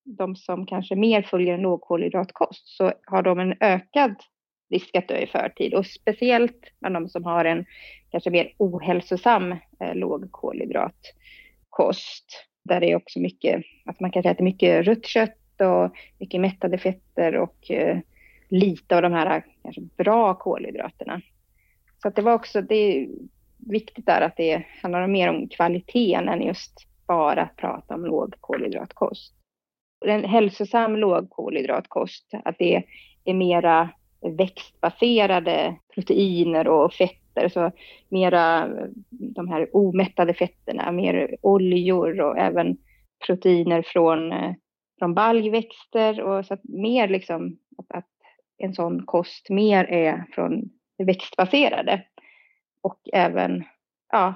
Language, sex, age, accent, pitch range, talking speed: Swedish, female, 30-49, native, 175-215 Hz, 130 wpm